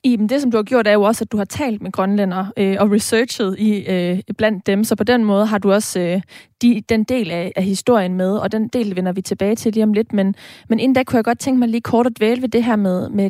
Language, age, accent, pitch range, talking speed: Danish, 20-39, native, 195-230 Hz, 295 wpm